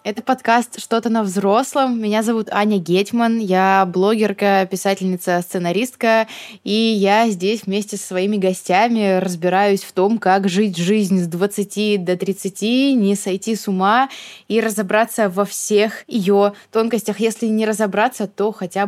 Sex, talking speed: female, 145 wpm